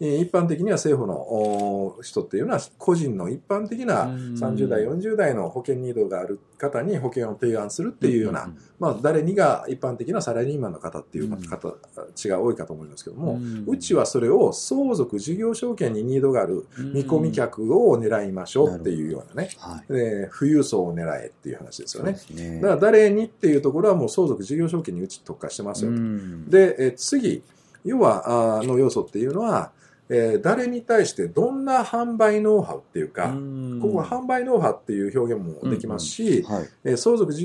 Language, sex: Japanese, male